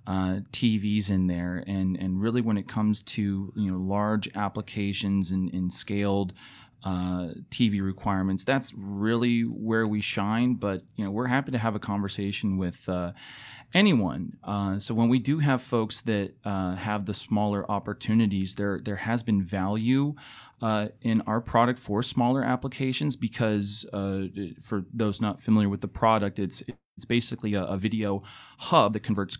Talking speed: 165 wpm